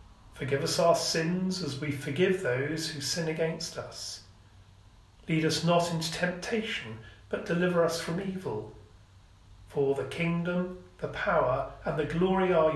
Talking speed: 145 wpm